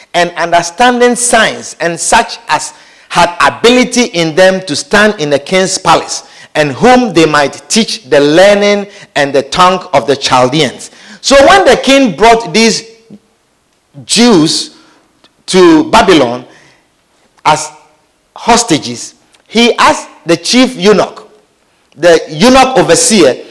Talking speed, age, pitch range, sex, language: 125 wpm, 50-69, 195-280 Hz, male, English